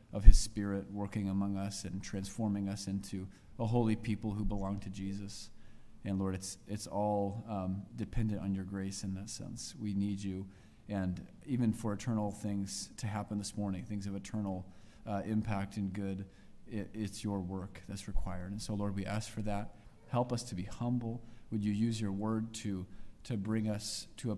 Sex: male